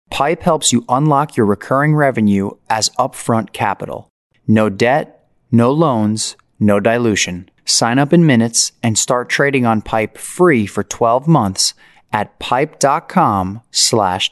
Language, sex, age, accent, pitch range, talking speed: English, male, 30-49, American, 105-135 Hz, 135 wpm